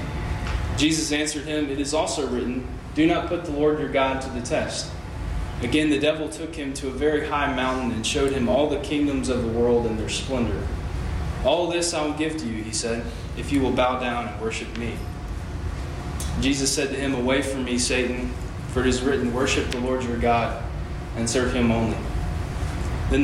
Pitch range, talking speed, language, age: 95-140 Hz, 200 wpm, English, 20-39